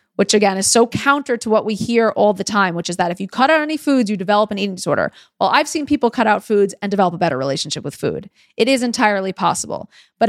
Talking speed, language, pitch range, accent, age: 260 wpm, English, 190-240 Hz, American, 30-49